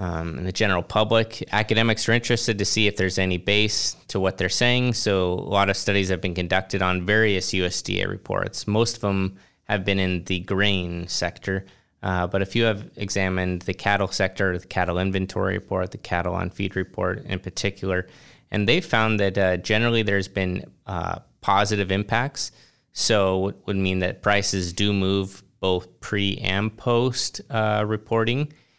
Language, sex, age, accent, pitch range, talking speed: English, male, 20-39, American, 95-110 Hz, 175 wpm